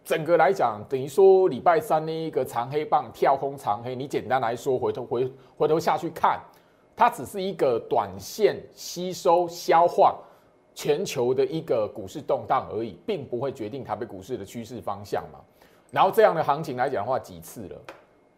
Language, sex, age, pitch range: Chinese, male, 30-49, 125-190 Hz